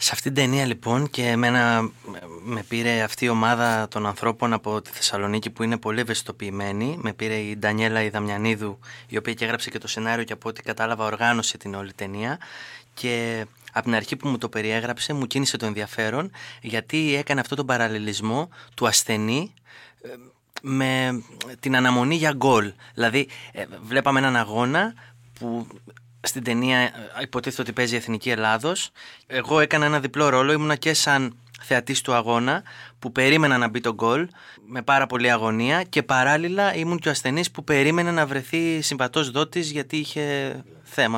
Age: 20-39